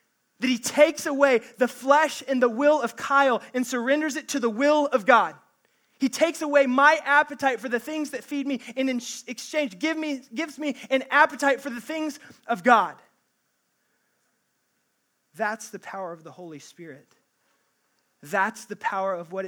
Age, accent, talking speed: 20-39, American, 165 wpm